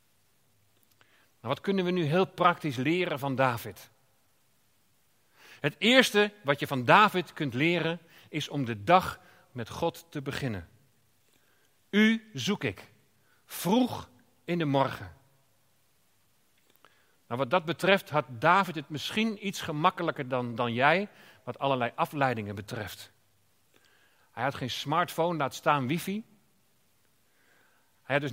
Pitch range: 135-195 Hz